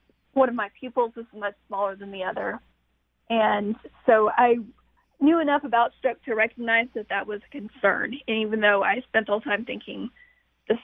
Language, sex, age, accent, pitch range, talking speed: English, female, 30-49, American, 205-245 Hz, 185 wpm